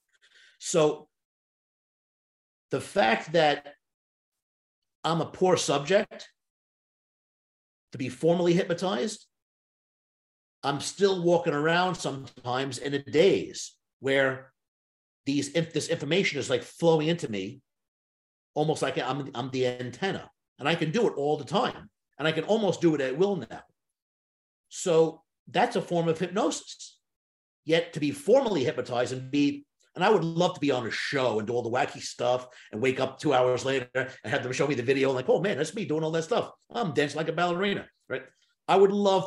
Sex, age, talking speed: male, 50-69, 175 wpm